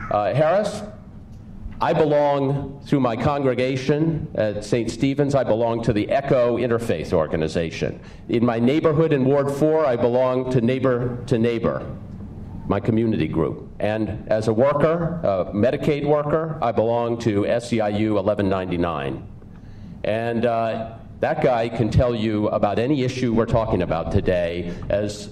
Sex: male